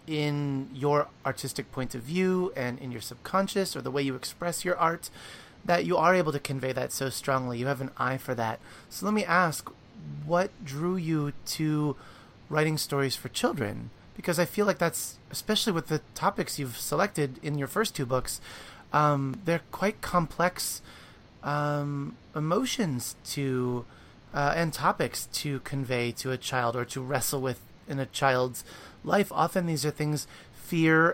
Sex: male